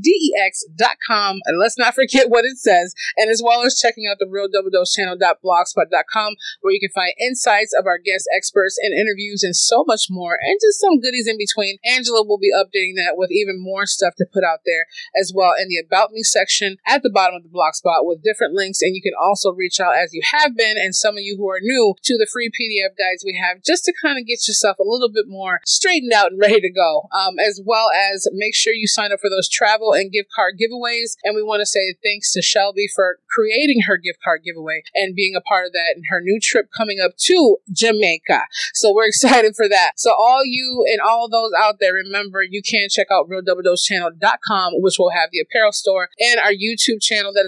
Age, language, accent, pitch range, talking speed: 30-49, English, American, 190-235 Hz, 235 wpm